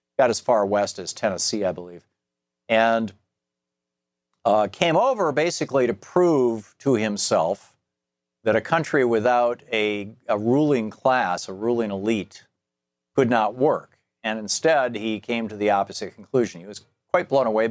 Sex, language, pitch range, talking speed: male, English, 90-125 Hz, 150 wpm